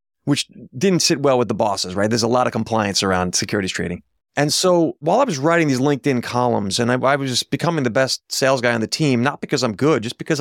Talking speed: 255 wpm